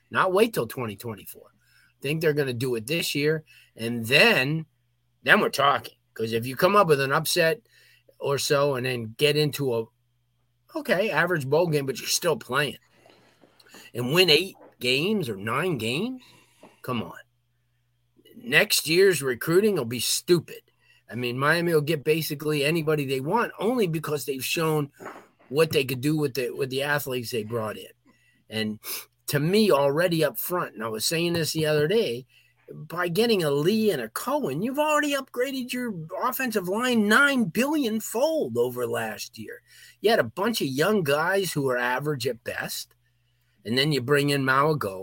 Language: English